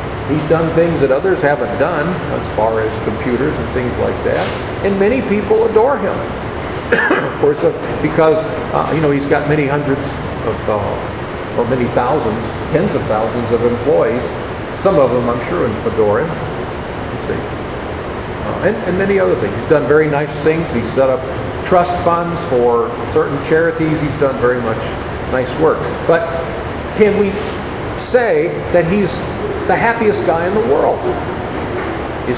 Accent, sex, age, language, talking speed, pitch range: American, male, 50-69, English, 160 wpm, 135-195 Hz